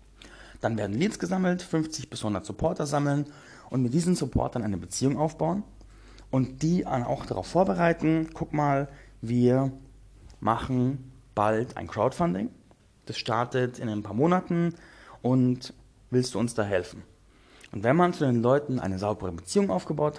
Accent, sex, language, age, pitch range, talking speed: German, male, German, 30-49, 110-150 Hz, 150 wpm